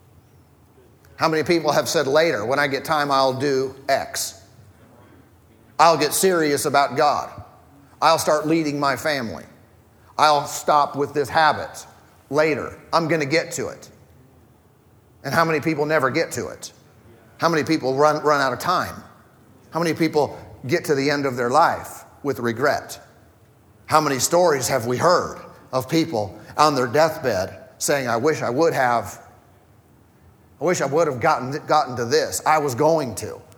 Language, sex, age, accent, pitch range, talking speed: English, male, 40-59, American, 115-155 Hz, 165 wpm